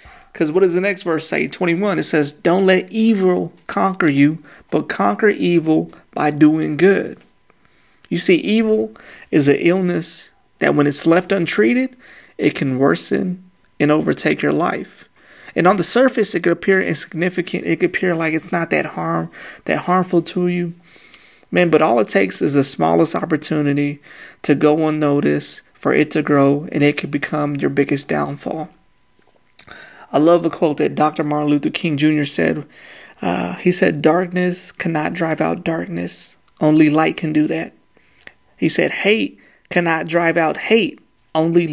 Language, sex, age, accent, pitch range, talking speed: English, male, 30-49, American, 145-180 Hz, 165 wpm